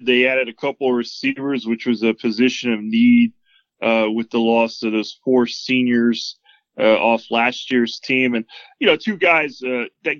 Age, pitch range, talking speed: 20-39, 120-145 Hz, 190 wpm